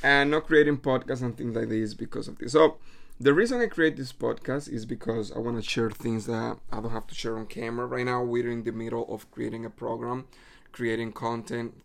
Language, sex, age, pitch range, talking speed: English, male, 30-49, 115-145 Hz, 230 wpm